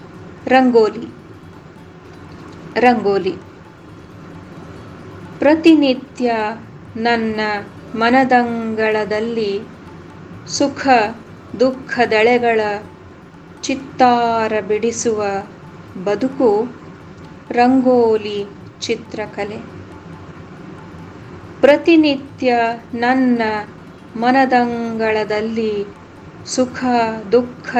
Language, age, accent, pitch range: Kannada, 20-39, native, 215-250 Hz